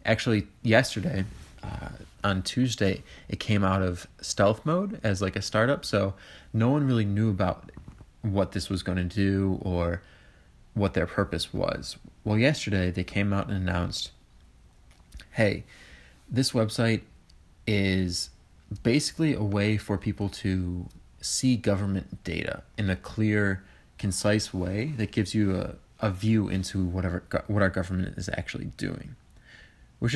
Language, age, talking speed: English, 20-39, 145 wpm